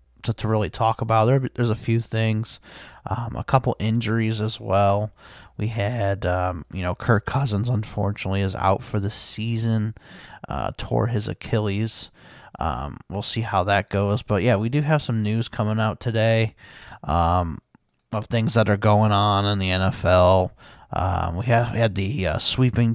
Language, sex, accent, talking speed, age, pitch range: English, male, American, 175 wpm, 30-49, 100-115 Hz